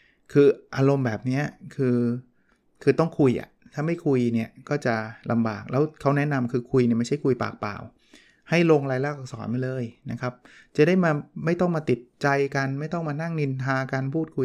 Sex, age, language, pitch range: male, 20-39, Thai, 120-150 Hz